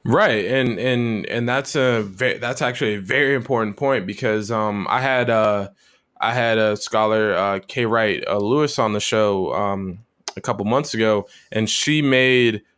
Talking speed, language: 180 wpm, English